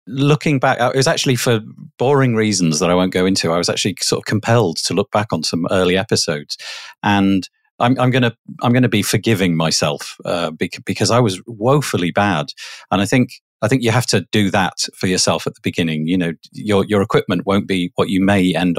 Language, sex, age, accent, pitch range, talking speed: English, male, 40-59, British, 90-110 Hz, 215 wpm